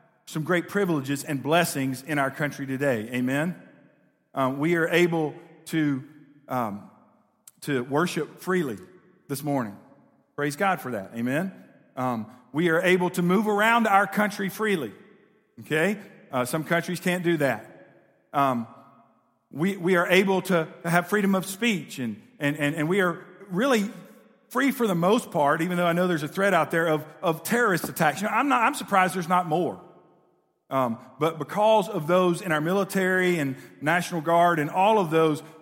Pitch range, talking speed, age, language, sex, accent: 140-185 Hz, 170 wpm, 50-69, English, male, American